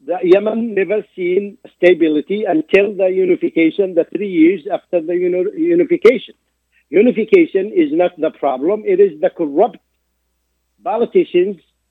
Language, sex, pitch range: Arabic, male, 175-275 Hz